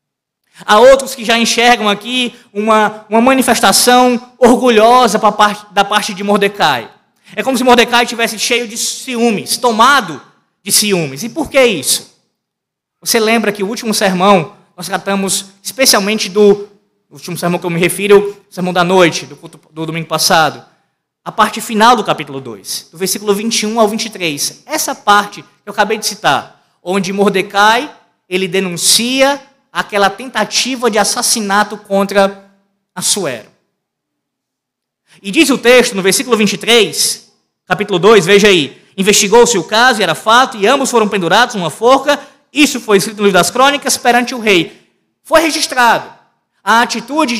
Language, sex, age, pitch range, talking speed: Portuguese, male, 20-39, 195-240 Hz, 150 wpm